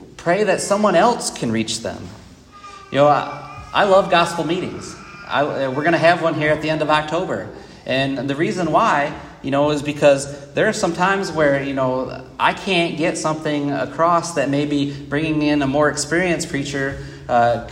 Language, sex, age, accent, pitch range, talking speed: English, male, 30-49, American, 140-185 Hz, 185 wpm